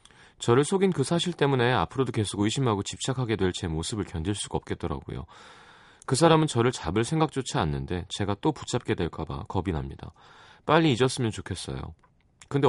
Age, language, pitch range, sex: 30-49, Korean, 85-125 Hz, male